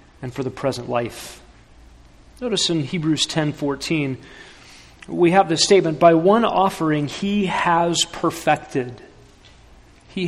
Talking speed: 125 wpm